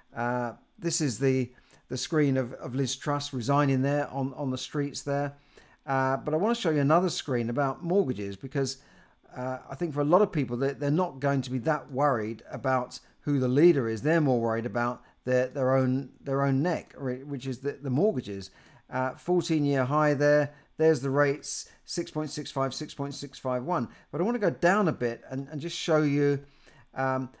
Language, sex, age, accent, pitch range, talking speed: English, male, 50-69, British, 130-165 Hz, 195 wpm